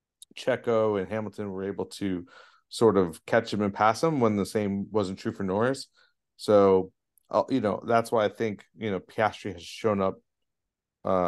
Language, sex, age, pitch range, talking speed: English, male, 30-49, 95-110 Hz, 180 wpm